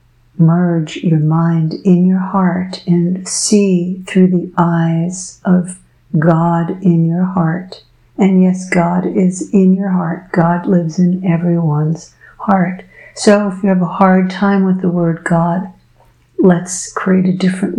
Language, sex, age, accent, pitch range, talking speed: English, female, 60-79, American, 120-185 Hz, 145 wpm